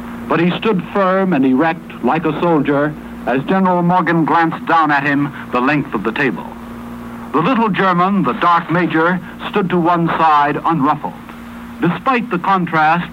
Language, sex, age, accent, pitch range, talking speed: English, male, 60-79, American, 155-195 Hz, 160 wpm